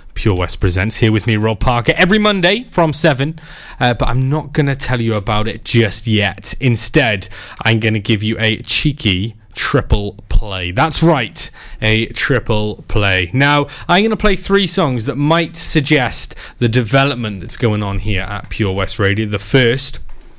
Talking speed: 175 wpm